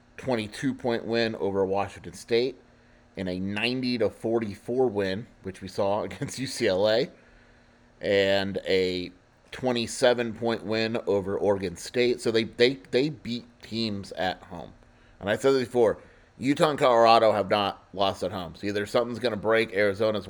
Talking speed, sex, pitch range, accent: 145 wpm, male, 95-115 Hz, American